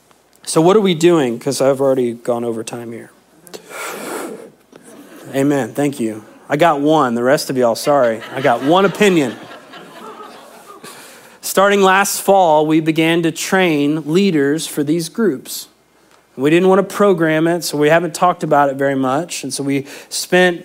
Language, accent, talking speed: English, American, 160 wpm